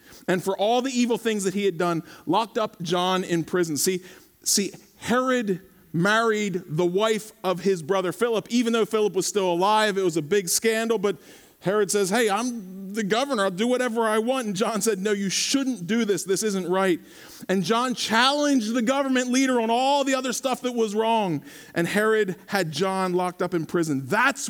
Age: 40-59